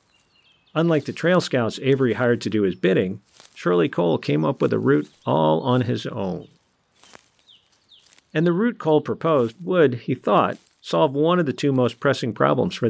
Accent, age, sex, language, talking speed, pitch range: American, 50-69, male, English, 175 wpm, 120-160 Hz